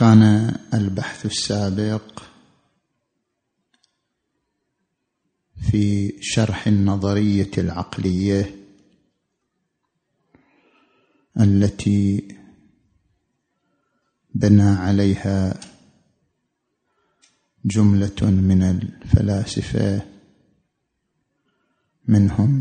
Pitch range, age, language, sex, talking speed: 100-110 Hz, 50-69, Arabic, male, 35 wpm